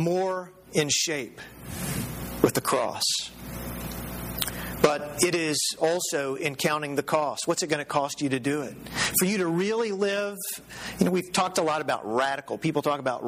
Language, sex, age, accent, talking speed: English, male, 50-69, American, 175 wpm